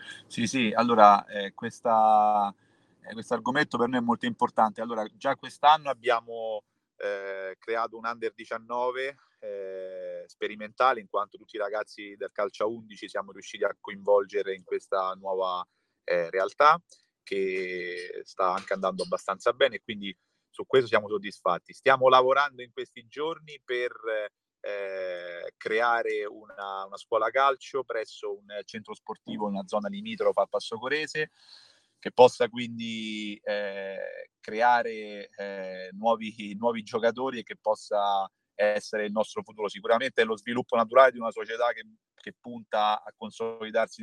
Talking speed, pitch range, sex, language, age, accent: 140 wpm, 105-135 Hz, male, Italian, 30-49, native